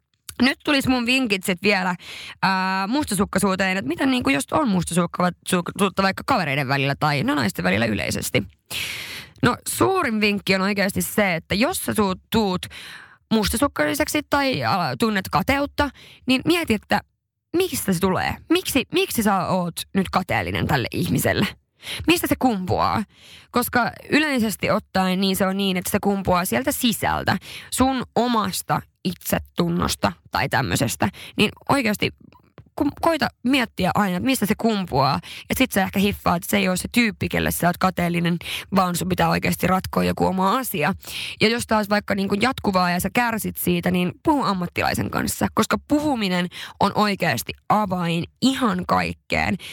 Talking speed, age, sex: 150 wpm, 20-39, female